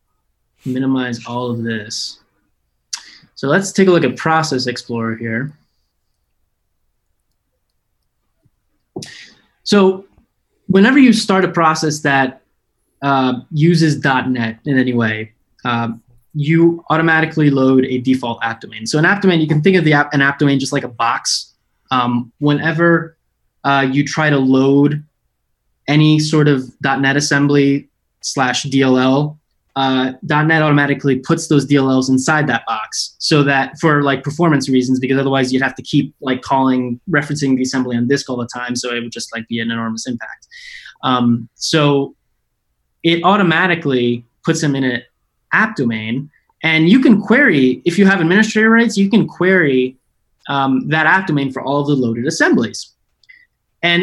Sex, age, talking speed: male, 20-39, 155 wpm